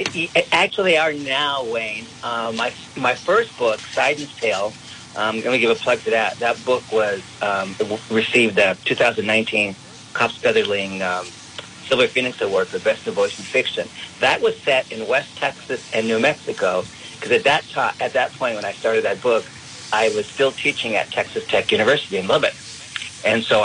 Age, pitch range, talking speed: 50-69, 110-145 Hz, 185 wpm